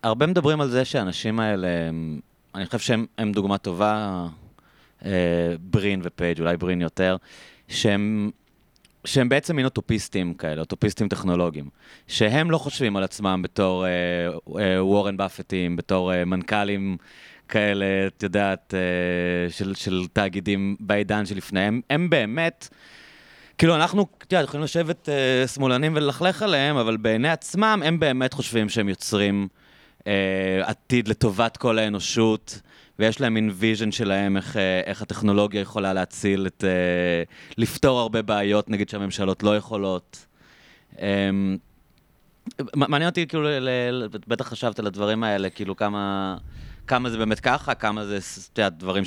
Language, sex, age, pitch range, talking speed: Hebrew, male, 30-49, 95-120 Hz, 130 wpm